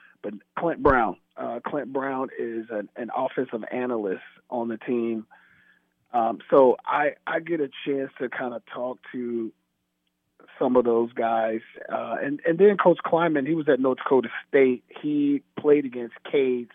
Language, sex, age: English, male, 40-59